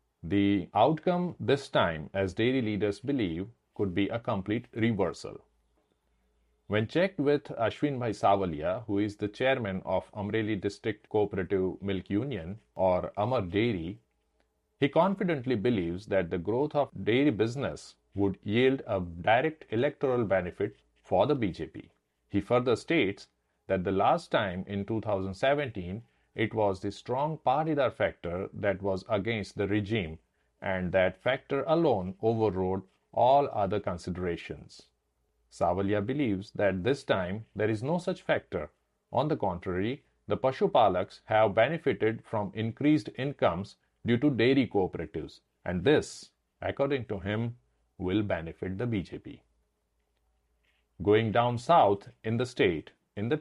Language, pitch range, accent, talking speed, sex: English, 95-125 Hz, Indian, 135 wpm, male